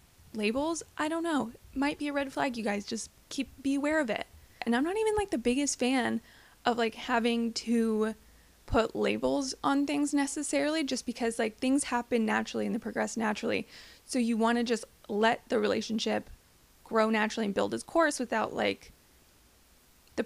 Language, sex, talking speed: English, female, 180 wpm